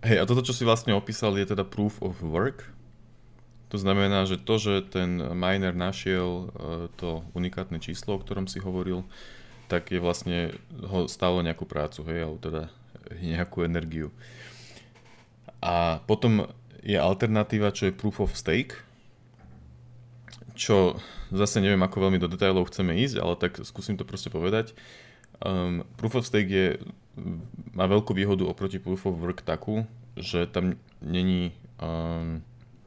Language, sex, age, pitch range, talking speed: Slovak, male, 30-49, 90-115 Hz, 145 wpm